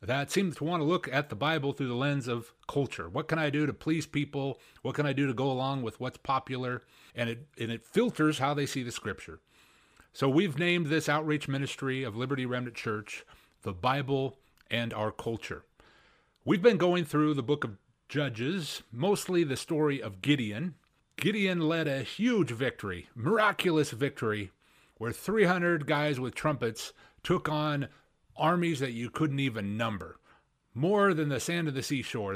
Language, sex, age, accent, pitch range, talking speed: English, male, 40-59, American, 125-155 Hz, 180 wpm